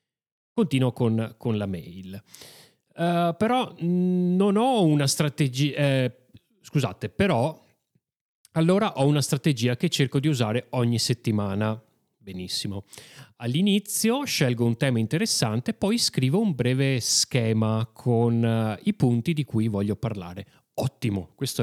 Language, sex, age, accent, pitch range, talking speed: Italian, male, 30-49, native, 115-145 Hz, 125 wpm